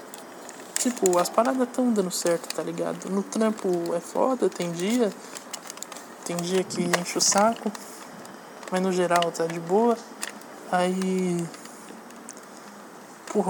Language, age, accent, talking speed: Portuguese, 20-39, Brazilian, 125 wpm